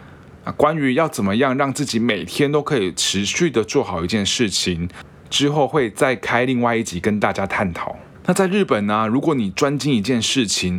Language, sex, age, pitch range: Chinese, male, 20-39, 100-135 Hz